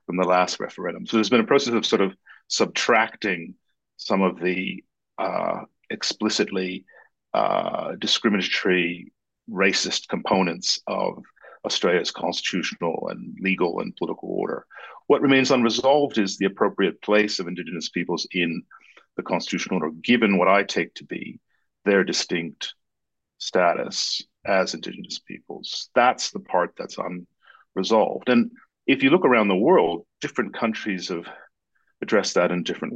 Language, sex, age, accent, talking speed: English, male, 50-69, American, 135 wpm